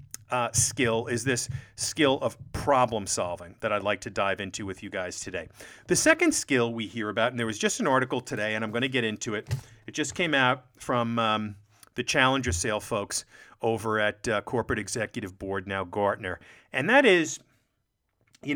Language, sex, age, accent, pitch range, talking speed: English, male, 40-59, American, 105-145 Hz, 195 wpm